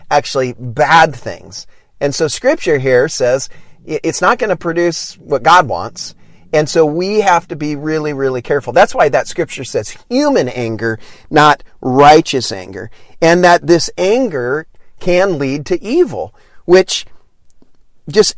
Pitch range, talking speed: 145-225 Hz, 145 wpm